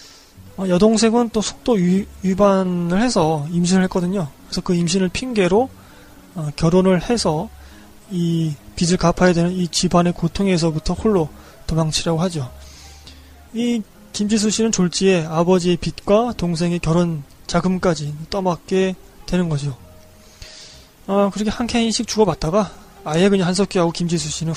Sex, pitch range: male, 155-195 Hz